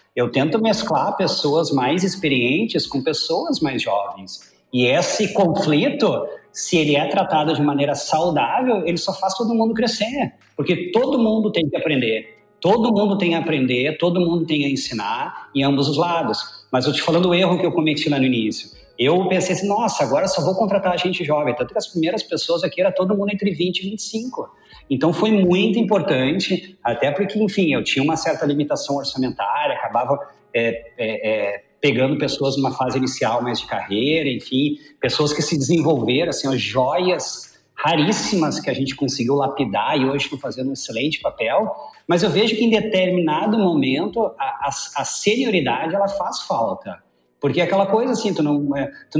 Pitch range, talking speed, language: 140-195 Hz, 185 wpm, Portuguese